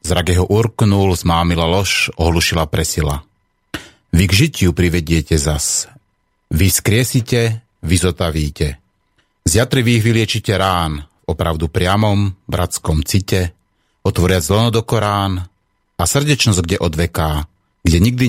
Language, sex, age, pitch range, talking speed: Slovak, male, 30-49, 85-110 Hz, 110 wpm